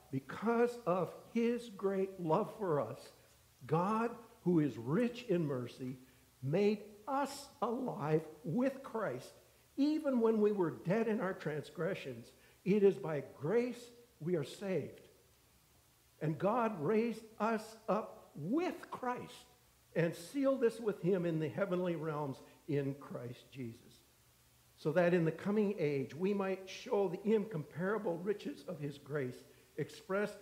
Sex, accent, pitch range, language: male, American, 135-200 Hz, English